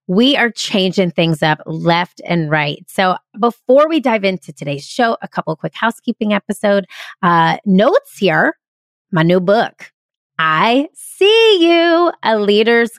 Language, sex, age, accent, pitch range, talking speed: English, female, 30-49, American, 180-250 Hz, 150 wpm